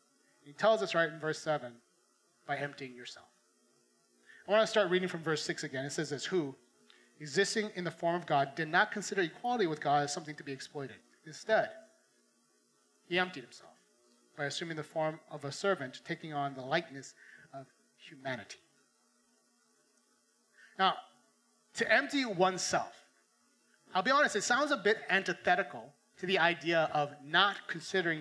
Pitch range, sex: 145-210 Hz, male